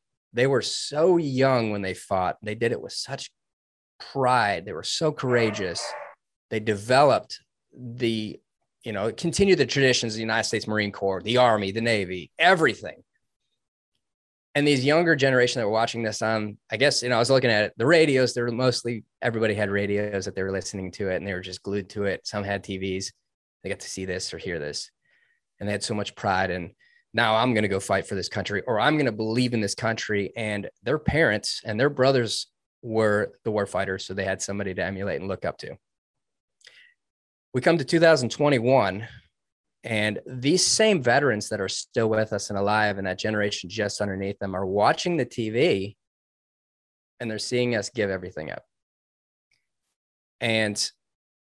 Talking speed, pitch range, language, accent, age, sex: 190 wpm, 100-125 Hz, English, American, 20-39, male